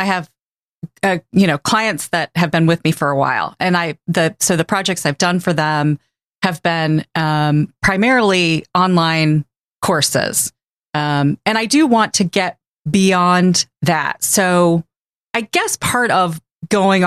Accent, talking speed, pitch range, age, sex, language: American, 160 wpm, 155-190 Hz, 30-49, female, English